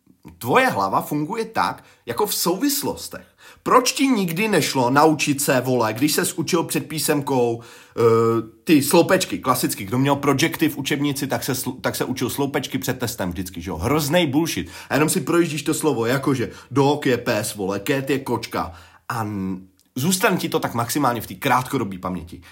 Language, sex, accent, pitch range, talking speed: Czech, male, native, 115-160 Hz, 175 wpm